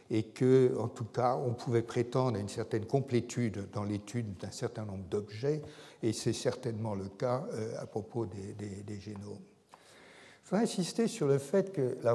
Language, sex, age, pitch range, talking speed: French, male, 60-79, 110-140 Hz, 180 wpm